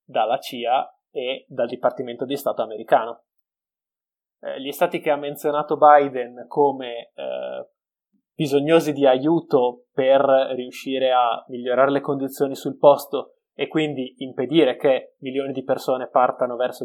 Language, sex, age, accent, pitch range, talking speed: Italian, male, 20-39, native, 130-160 Hz, 130 wpm